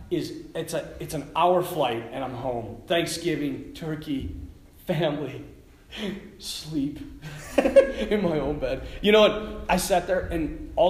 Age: 30-49